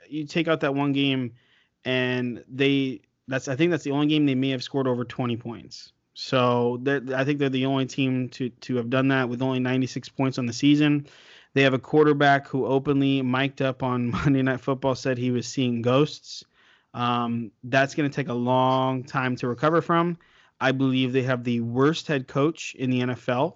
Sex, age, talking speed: male, 20-39, 205 wpm